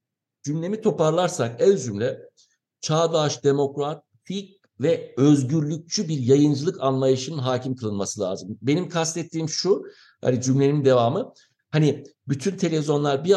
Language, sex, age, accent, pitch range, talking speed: English, male, 60-79, Turkish, 140-190 Hz, 110 wpm